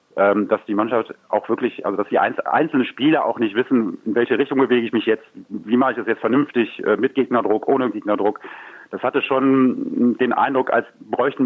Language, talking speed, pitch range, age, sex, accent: German, 195 wpm, 110-135 Hz, 40-59, male, German